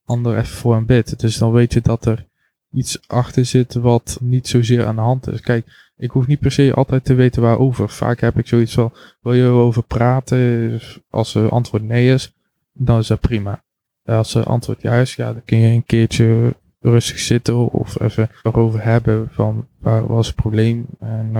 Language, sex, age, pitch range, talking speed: Dutch, male, 20-39, 110-125 Hz, 200 wpm